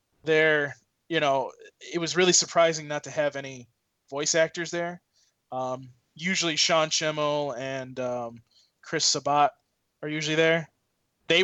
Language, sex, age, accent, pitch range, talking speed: English, male, 20-39, American, 135-165 Hz, 135 wpm